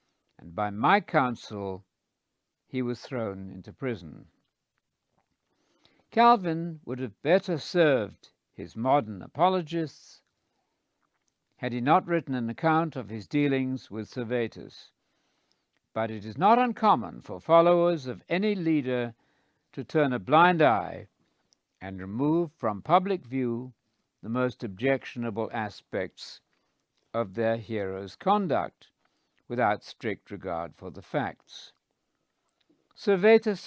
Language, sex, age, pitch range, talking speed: English, male, 60-79, 110-160 Hz, 110 wpm